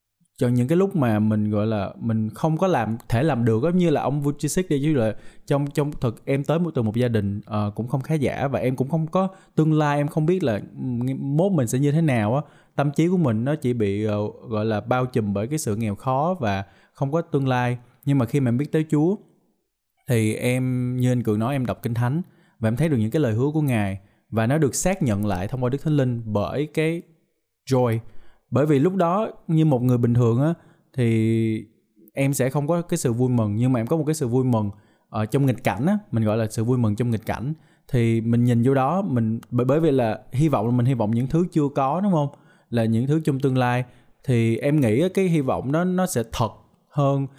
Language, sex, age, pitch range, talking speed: Vietnamese, male, 20-39, 115-155 Hz, 255 wpm